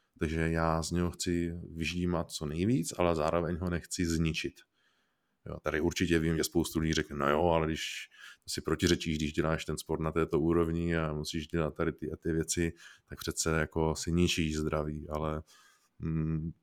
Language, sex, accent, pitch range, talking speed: Czech, male, native, 85-95 Hz, 175 wpm